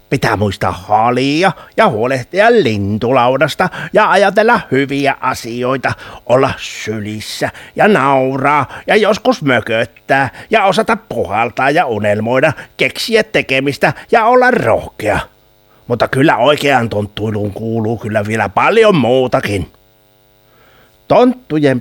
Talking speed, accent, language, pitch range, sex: 100 wpm, native, Finnish, 110-155 Hz, male